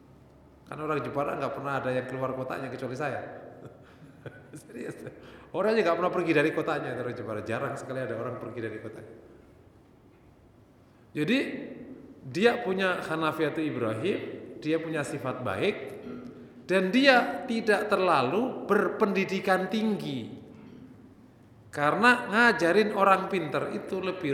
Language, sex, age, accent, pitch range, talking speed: Indonesian, male, 30-49, native, 135-220 Hz, 120 wpm